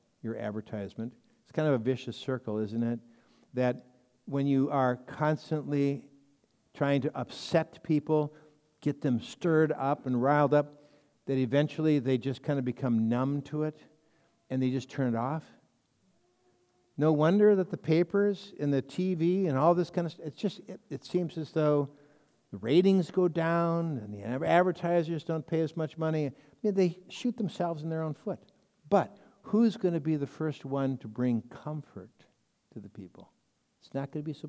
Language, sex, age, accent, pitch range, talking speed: English, male, 60-79, American, 125-165 Hz, 175 wpm